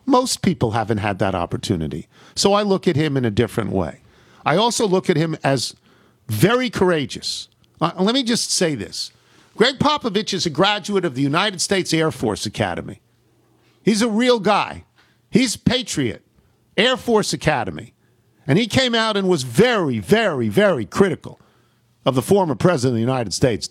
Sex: male